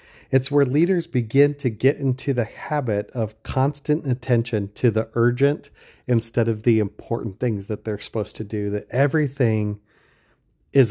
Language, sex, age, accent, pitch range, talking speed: English, male, 40-59, American, 115-140 Hz, 155 wpm